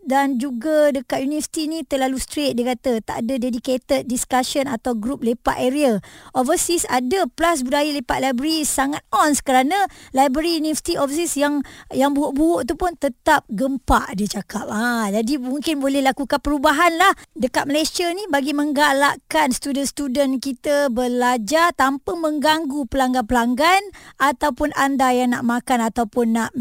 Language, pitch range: Malay, 255-310 Hz